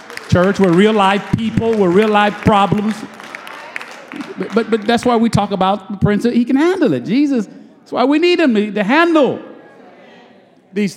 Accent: American